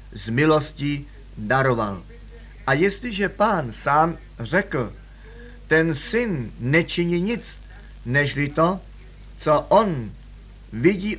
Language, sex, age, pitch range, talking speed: Czech, male, 50-69, 135-180 Hz, 90 wpm